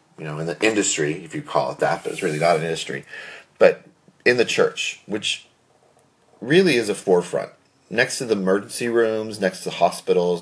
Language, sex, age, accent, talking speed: English, male, 30-49, American, 190 wpm